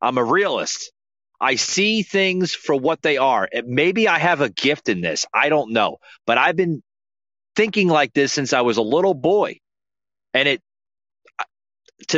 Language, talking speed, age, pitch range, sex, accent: English, 170 wpm, 30-49, 110-180 Hz, male, American